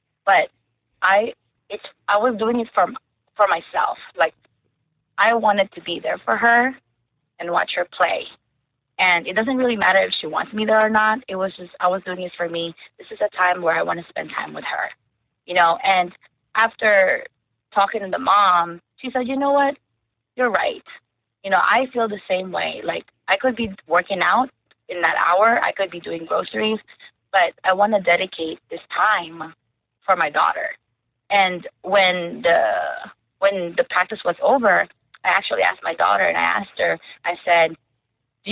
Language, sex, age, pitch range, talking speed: English, female, 20-39, 160-220 Hz, 190 wpm